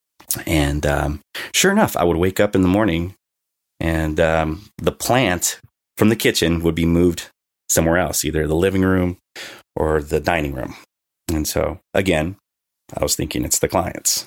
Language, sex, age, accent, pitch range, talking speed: English, male, 30-49, American, 80-100 Hz, 170 wpm